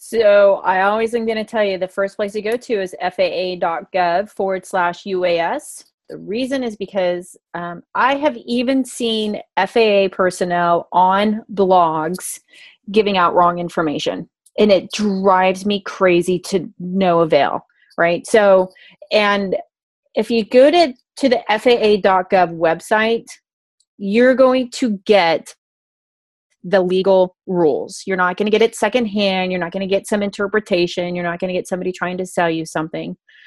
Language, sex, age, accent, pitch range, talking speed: English, female, 30-49, American, 185-235 Hz, 155 wpm